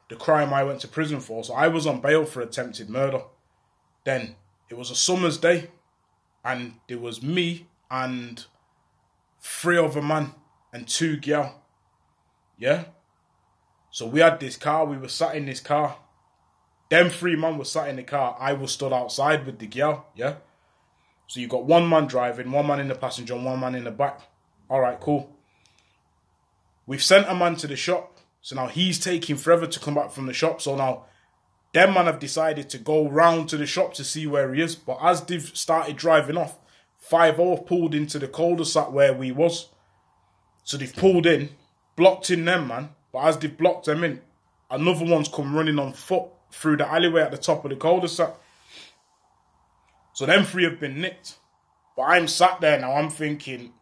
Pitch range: 130-165 Hz